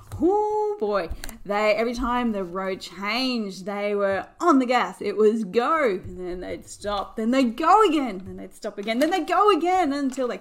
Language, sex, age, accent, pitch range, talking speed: English, female, 30-49, Australian, 220-305 Hz, 190 wpm